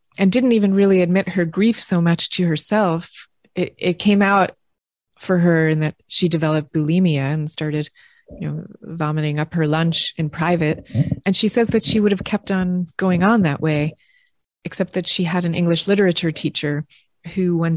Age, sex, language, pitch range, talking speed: 30-49, female, English, 160-195 Hz, 185 wpm